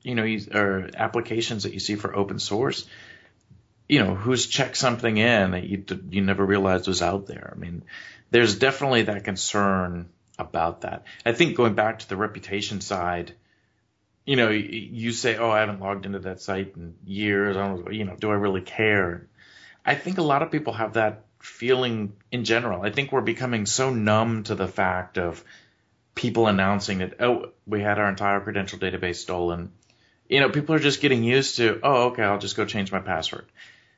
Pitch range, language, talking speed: 95-115 Hz, English, 190 wpm